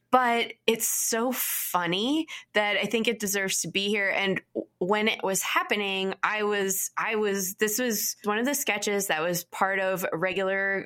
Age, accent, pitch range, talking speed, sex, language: 20-39, American, 185-235 Hz, 175 wpm, female, English